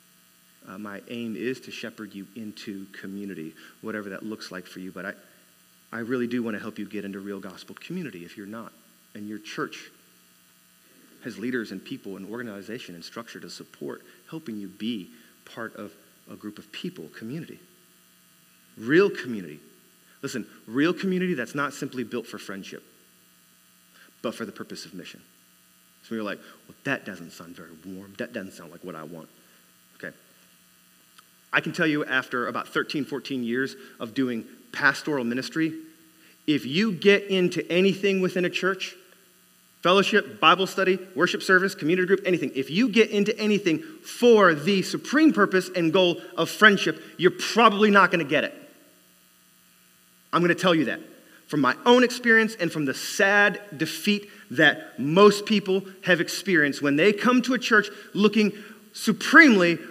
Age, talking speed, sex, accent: 40-59, 165 wpm, male, American